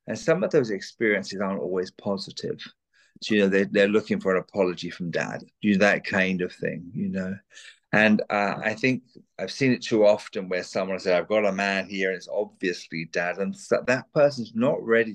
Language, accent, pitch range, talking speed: English, British, 95-120 Hz, 220 wpm